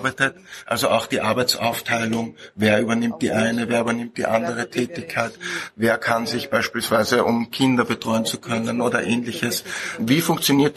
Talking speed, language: 145 wpm, English